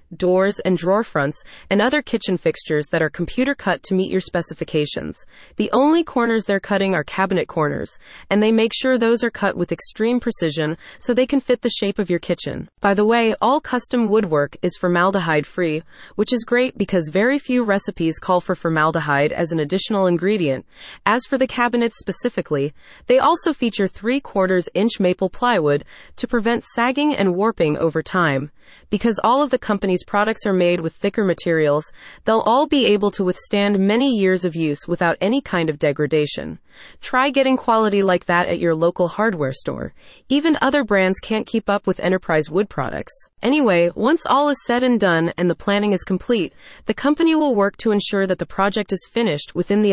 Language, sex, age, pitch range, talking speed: English, female, 30-49, 170-235 Hz, 190 wpm